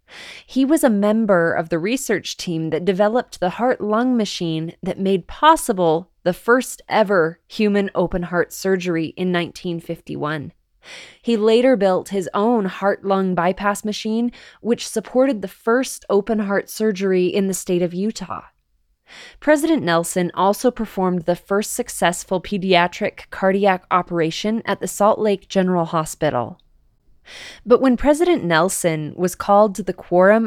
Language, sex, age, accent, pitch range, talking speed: English, female, 20-39, American, 175-220 Hz, 130 wpm